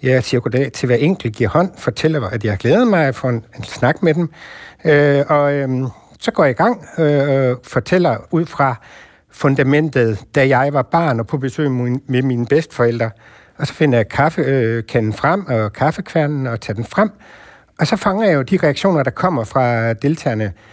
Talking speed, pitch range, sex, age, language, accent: 205 wpm, 115-150 Hz, male, 60-79, Danish, native